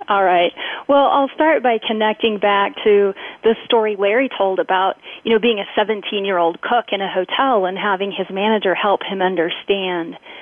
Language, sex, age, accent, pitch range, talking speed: English, female, 30-49, American, 195-265 Hz, 175 wpm